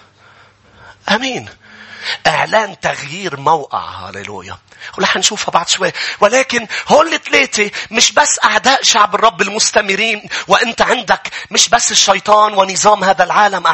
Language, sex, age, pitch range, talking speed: English, male, 40-59, 210-280 Hz, 120 wpm